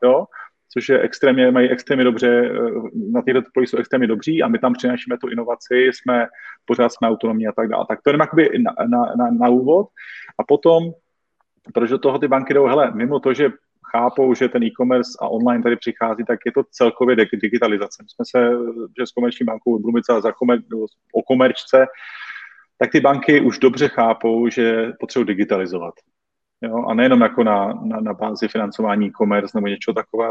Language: Czech